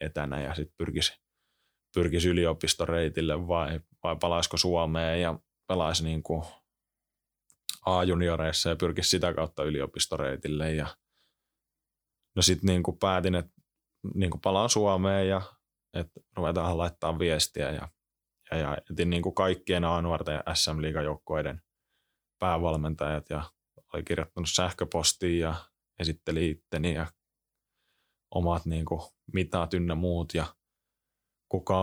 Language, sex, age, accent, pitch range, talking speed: Finnish, male, 20-39, native, 80-90 Hz, 115 wpm